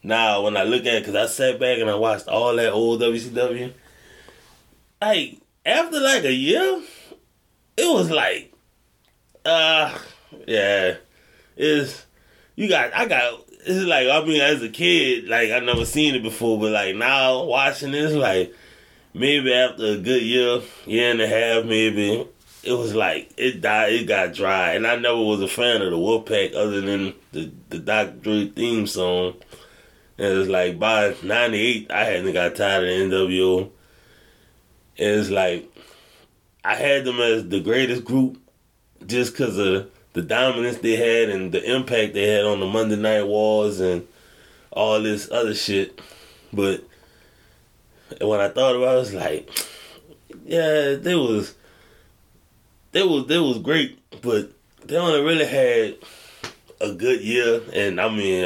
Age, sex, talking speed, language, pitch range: 20-39, male, 165 wpm, English, 105-135 Hz